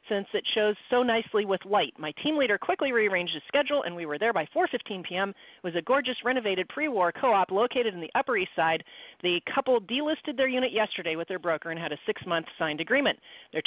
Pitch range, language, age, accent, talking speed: 165-230 Hz, English, 40-59, American, 220 wpm